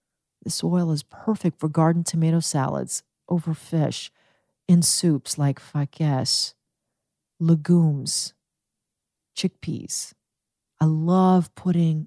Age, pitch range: 40-59, 155-200 Hz